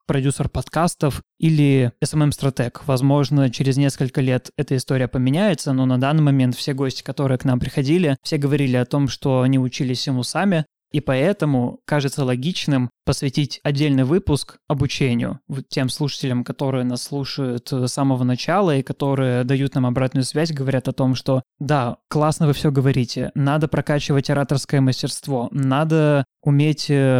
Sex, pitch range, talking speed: male, 130-150 Hz, 150 wpm